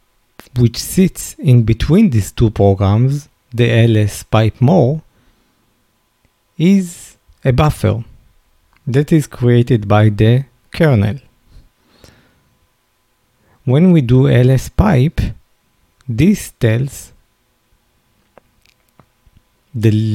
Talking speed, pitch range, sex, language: 85 wpm, 110-150 Hz, male, English